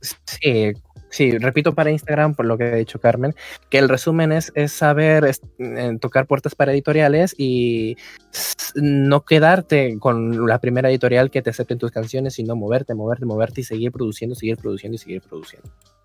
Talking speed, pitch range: 180 wpm, 110-145 Hz